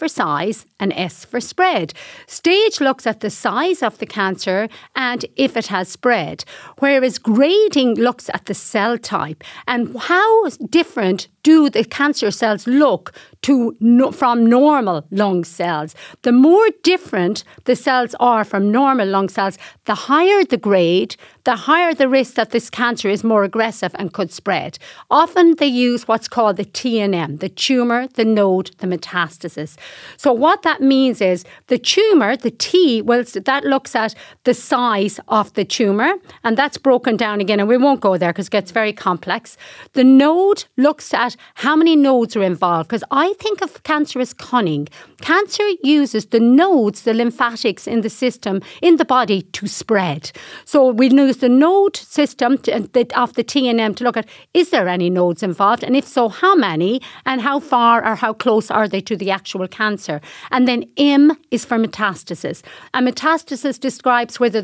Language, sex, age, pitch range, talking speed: English, female, 50-69, 205-280 Hz, 175 wpm